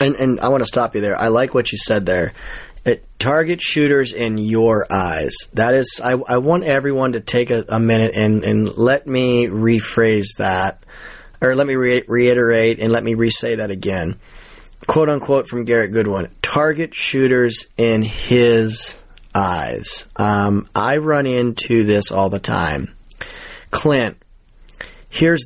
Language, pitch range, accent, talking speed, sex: English, 110-135 Hz, American, 160 wpm, male